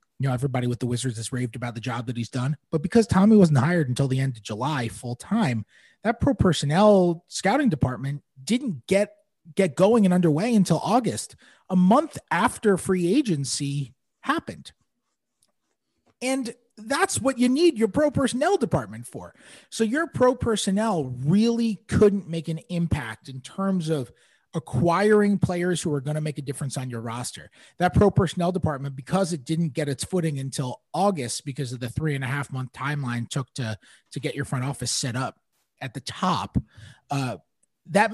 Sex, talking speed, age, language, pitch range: male, 180 wpm, 30-49, English, 130-190 Hz